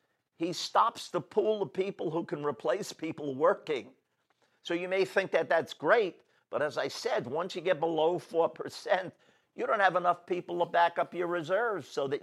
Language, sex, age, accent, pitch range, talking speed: English, male, 50-69, American, 155-195 Hz, 190 wpm